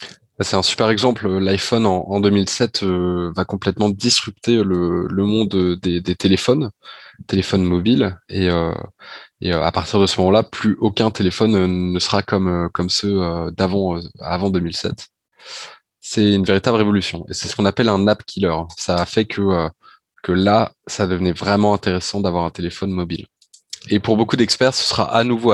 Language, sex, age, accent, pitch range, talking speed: French, male, 20-39, French, 90-110 Hz, 170 wpm